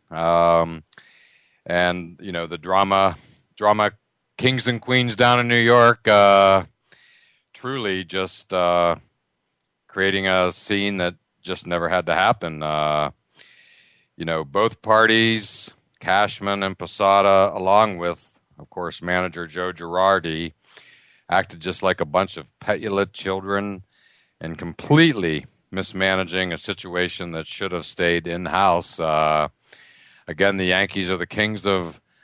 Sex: male